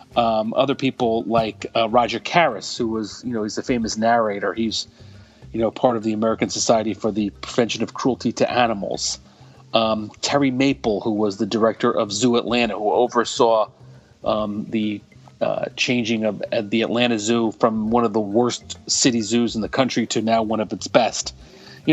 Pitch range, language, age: 105-125 Hz, English, 30-49